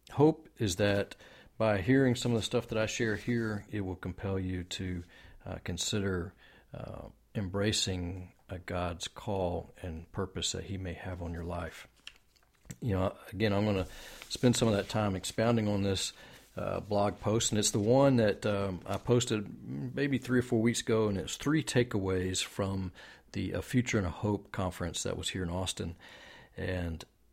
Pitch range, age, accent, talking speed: 90-110 Hz, 40-59, American, 180 wpm